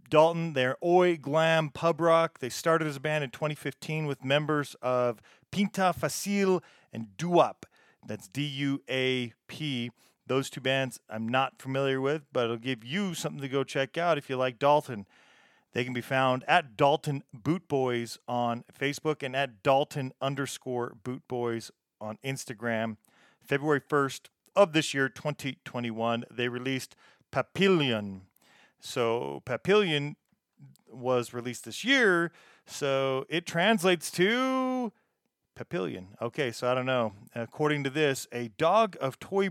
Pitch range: 125-160 Hz